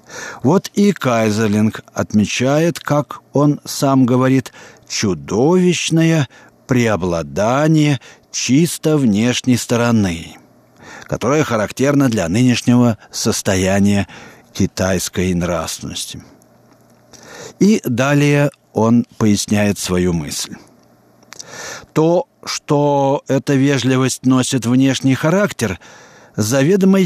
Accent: native